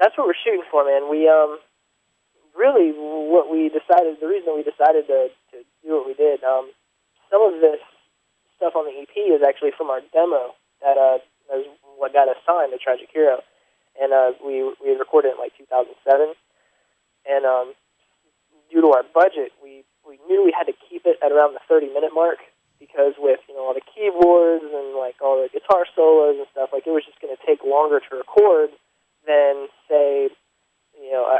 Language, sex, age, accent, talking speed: English, male, 20-39, American, 195 wpm